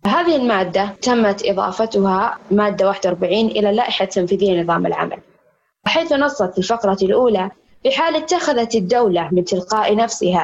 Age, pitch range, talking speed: 20-39, 195-250 Hz, 125 wpm